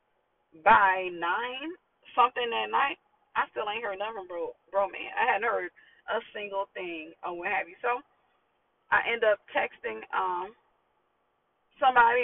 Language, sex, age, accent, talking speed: English, female, 30-49, American, 145 wpm